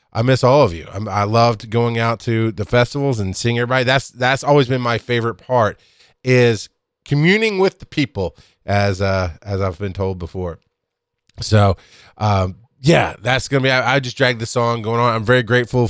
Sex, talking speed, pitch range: male, 195 wpm, 95-120 Hz